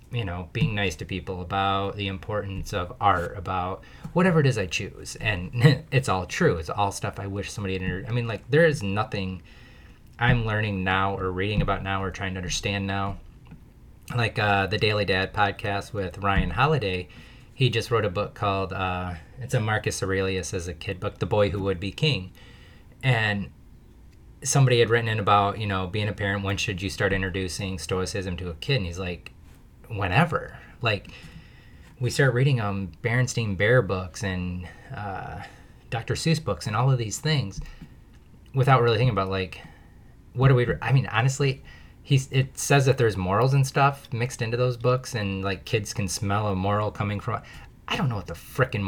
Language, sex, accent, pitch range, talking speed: English, male, American, 95-125 Hz, 195 wpm